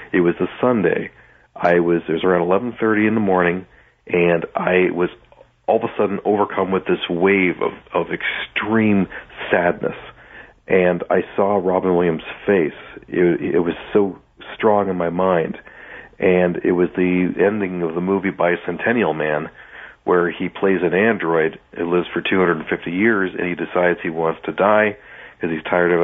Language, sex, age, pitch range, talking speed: English, male, 40-59, 85-95 Hz, 170 wpm